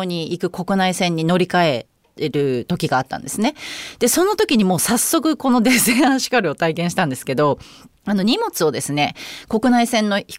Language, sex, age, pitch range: Japanese, female, 30-49, 165-255 Hz